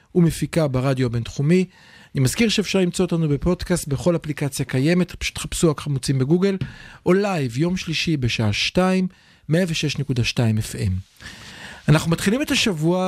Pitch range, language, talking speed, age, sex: 130-175 Hz, Hebrew, 130 wpm, 40-59, male